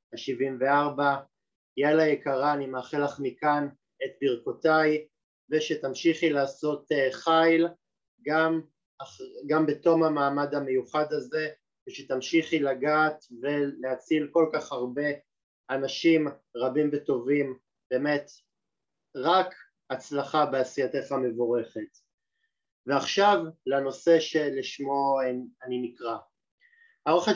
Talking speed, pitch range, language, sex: 85 wpm, 135-165 Hz, Hebrew, male